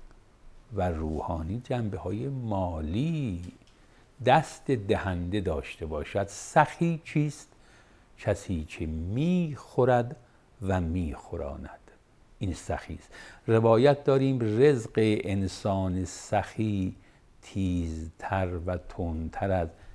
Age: 60-79